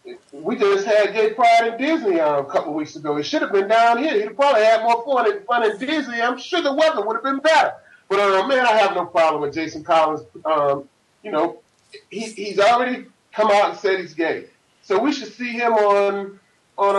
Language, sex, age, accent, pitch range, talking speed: English, male, 30-49, American, 180-240 Hz, 230 wpm